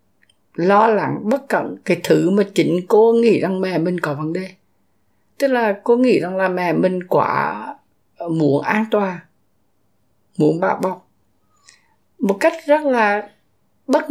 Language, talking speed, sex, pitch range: Vietnamese, 155 wpm, female, 180-235 Hz